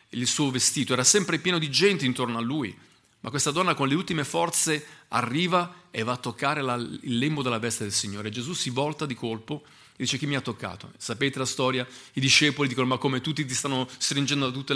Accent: native